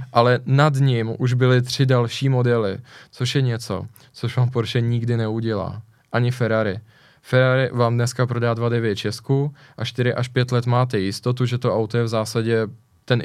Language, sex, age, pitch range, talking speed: Czech, male, 20-39, 110-125 Hz, 170 wpm